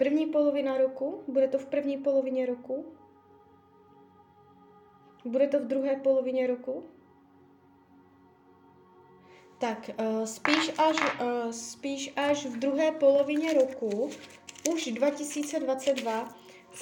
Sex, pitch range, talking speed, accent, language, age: female, 210-280 Hz, 90 wpm, native, Czech, 20-39